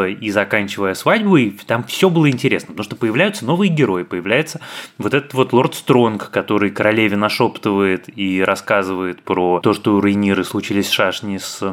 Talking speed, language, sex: 160 wpm, Russian, male